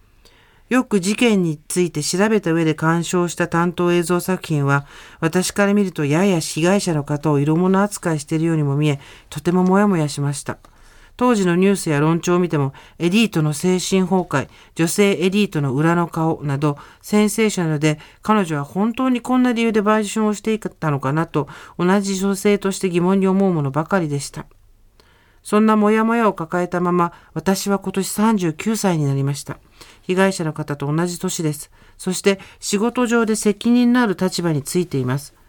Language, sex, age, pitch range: Japanese, male, 50-69, 155-195 Hz